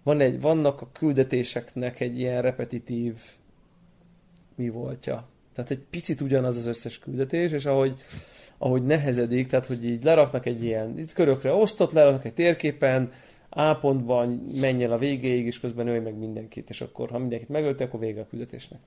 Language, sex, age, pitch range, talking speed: Hungarian, male, 30-49, 120-145 Hz, 160 wpm